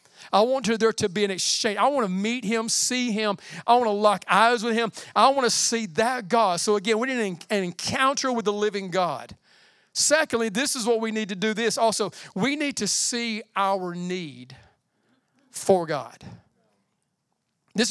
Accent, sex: American, male